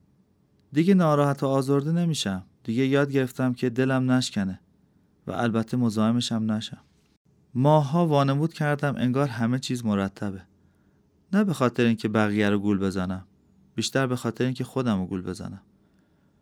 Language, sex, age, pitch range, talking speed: Persian, male, 30-49, 105-140 Hz, 140 wpm